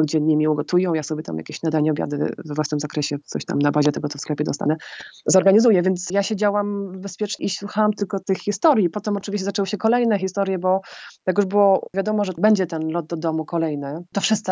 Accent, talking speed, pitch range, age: native, 210 wpm, 160-190 Hz, 20-39